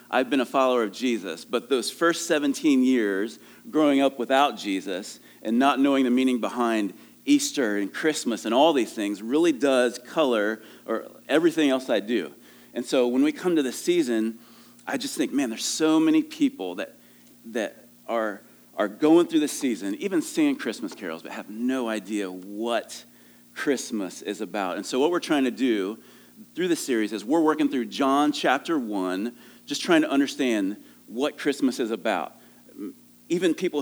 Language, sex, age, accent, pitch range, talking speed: English, male, 40-59, American, 110-170 Hz, 175 wpm